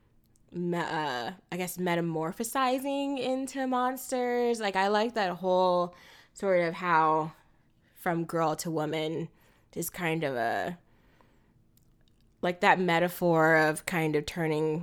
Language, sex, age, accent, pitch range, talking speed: English, female, 20-39, American, 160-235 Hz, 115 wpm